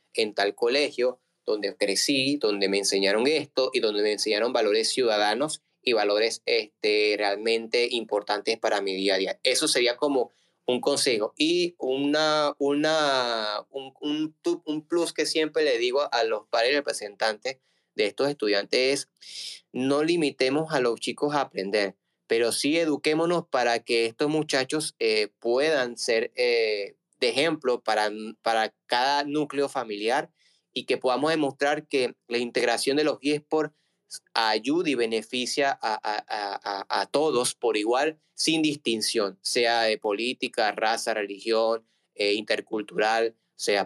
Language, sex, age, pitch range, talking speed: Spanish, male, 20-39, 115-170 Hz, 140 wpm